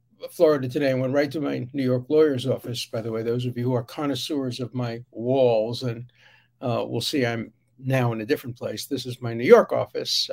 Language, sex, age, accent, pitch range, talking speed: English, male, 60-79, American, 120-150 Hz, 225 wpm